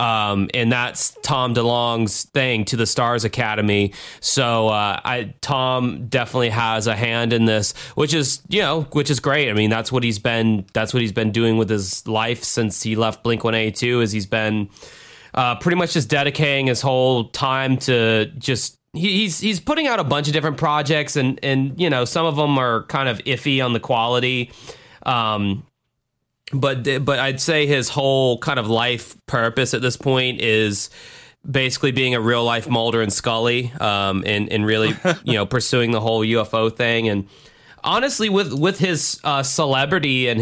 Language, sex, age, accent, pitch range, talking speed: English, male, 30-49, American, 115-135 Hz, 185 wpm